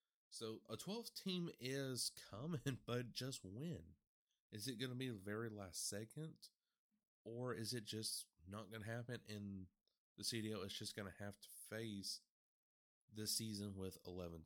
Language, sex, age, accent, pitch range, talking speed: English, male, 30-49, American, 95-120 Hz, 165 wpm